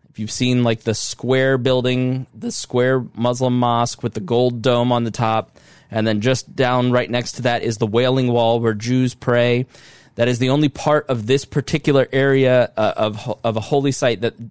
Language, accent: English, American